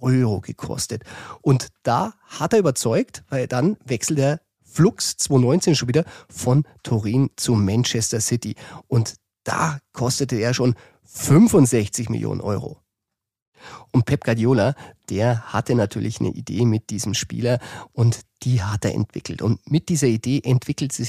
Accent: German